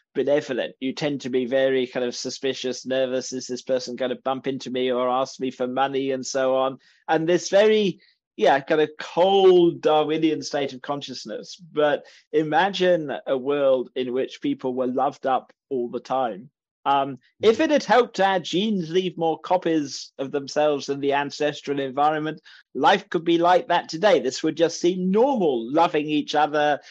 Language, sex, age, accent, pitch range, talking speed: English, male, 30-49, British, 135-175 Hz, 180 wpm